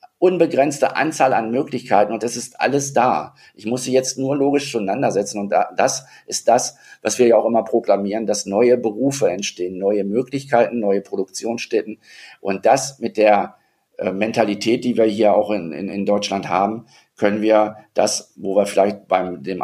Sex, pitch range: male, 95-120 Hz